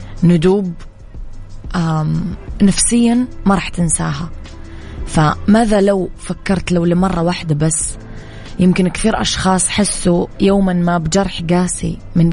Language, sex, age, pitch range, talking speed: English, female, 20-39, 160-190 Hz, 100 wpm